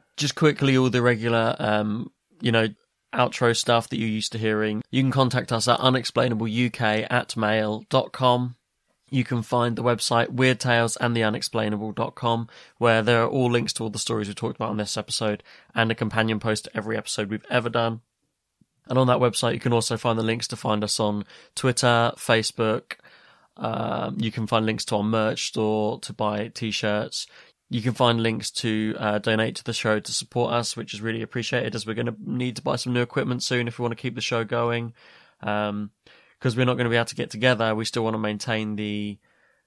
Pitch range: 110-120 Hz